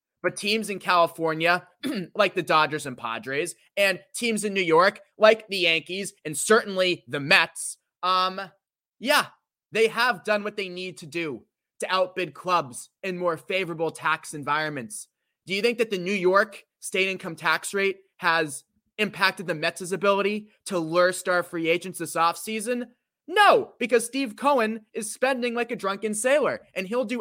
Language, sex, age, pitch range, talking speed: English, male, 20-39, 175-230 Hz, 165 wpm